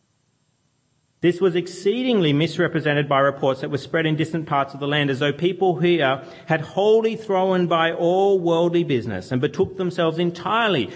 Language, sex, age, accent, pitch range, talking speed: English, male, 40-59, Australian, 130-180 Hz, 165 wpm